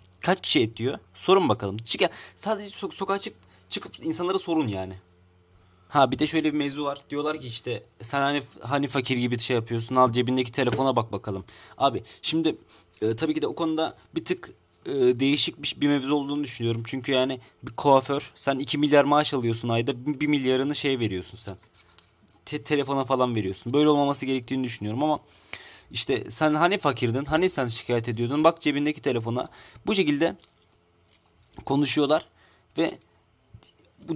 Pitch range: 115-150 Hz